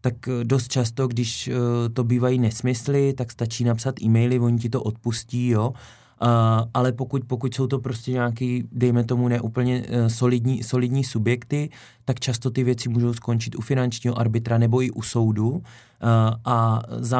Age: 20-39